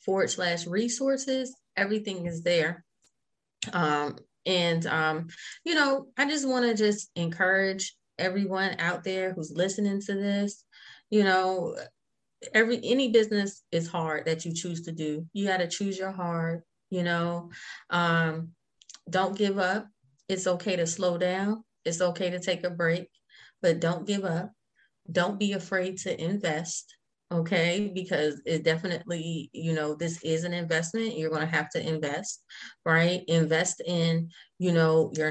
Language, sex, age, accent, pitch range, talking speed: English, female, 20-39, American, 165-200 Hz, 155 wpm